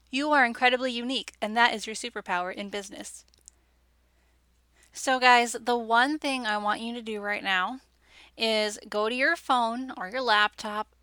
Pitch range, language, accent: 205-245 Hz, English, American